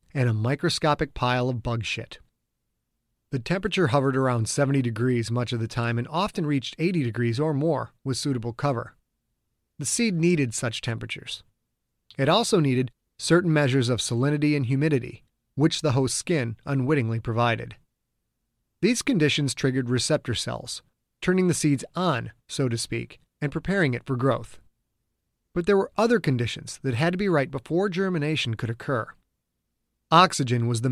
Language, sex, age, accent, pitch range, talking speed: English, male, 30-49, American, 120-150 Hz, 155 wpm